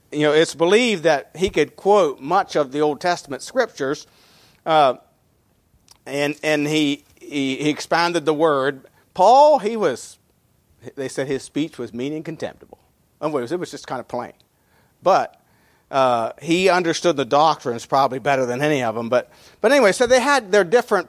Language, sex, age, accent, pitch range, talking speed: English, male, 50-69, American, 145-200 Hz, 180 wpm